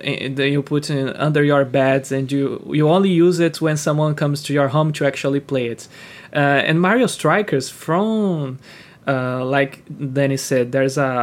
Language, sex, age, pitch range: English, male, 20-39, 140-180 Hz